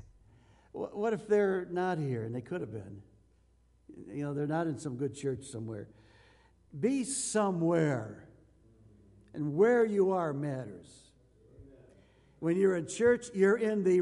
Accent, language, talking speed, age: American, English, 140 wpm, 60-79